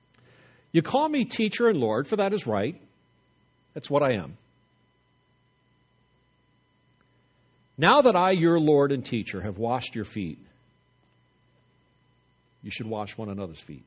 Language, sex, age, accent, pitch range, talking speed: English, male, 50-69, American, 105-125 Hz, 135 wpm